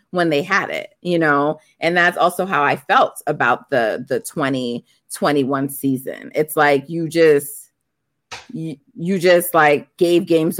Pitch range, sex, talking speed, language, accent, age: 145-185 Hz, female, 155 wpm, English, American, 30-49